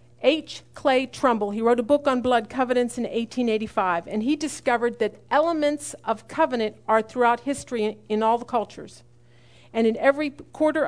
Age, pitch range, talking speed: 50-69, 210-250 Hz, 170 wpm